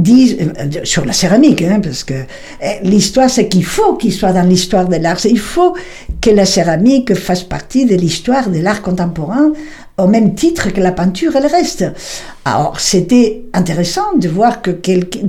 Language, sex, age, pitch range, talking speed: French, female, 60-79, 180-235 Hz, 170 wpm